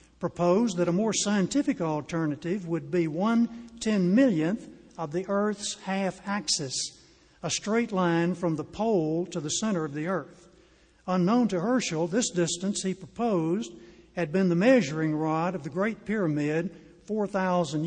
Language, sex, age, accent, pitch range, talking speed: English, male, 60-79, American, 165-210 Hz, 150 wpm